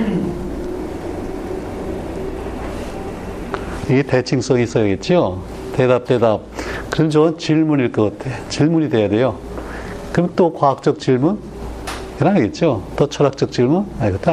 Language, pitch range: Korean, 110-145 Hz